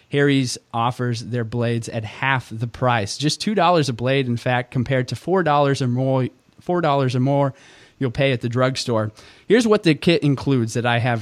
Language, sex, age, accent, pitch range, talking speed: English, male, 30-49, American, 125-155 Hz, 185 wpm